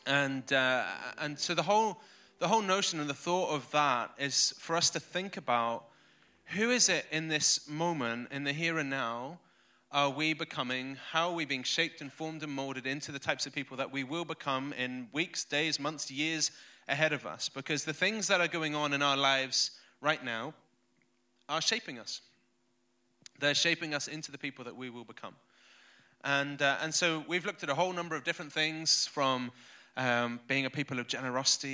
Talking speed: 200 wpm